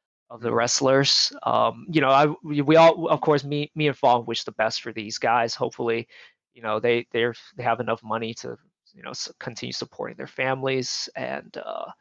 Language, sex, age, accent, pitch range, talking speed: English, male, 30-49, American, 120-155 Hz, 190 wpm